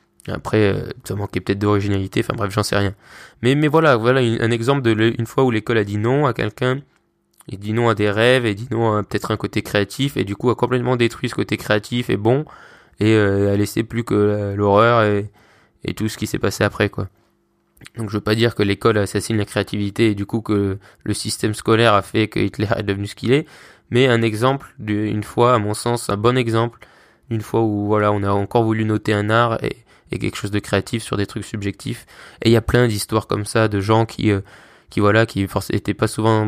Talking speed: 240 wpm